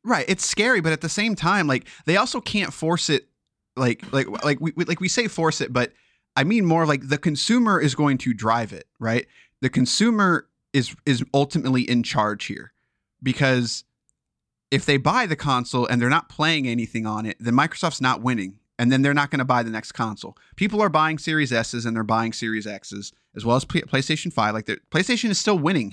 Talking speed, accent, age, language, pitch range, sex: 215 wpm, American, 30-49, English, 115-160 Hz, male